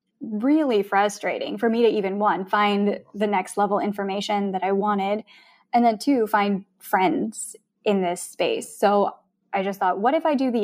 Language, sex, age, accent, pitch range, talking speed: English, female, 10-29, American, 195-230 Hz, 180 wpm